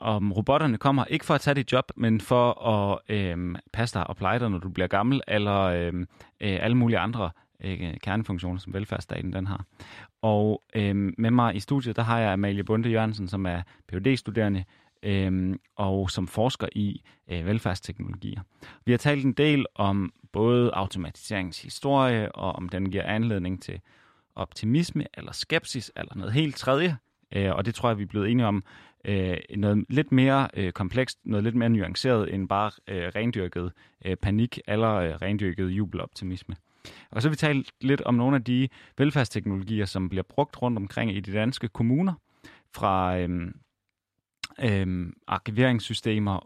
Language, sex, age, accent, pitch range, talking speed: Danish, male, 30-49, native, 95-125 Hz, 160 wpm